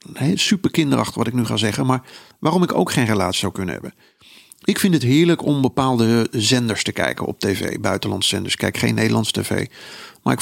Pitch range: 115-175 Hz